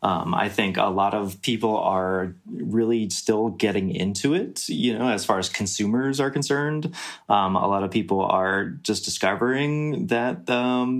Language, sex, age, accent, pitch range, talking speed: English, male, 20-39, American, 95-115 Hz, 170 wpm